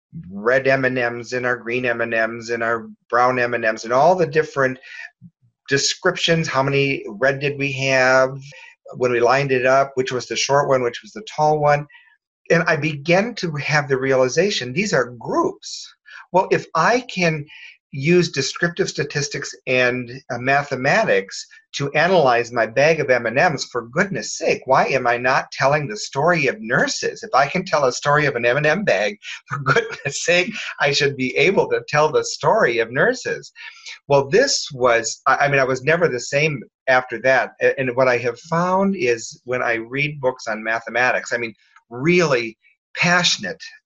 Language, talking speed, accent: English, 170 wpm, American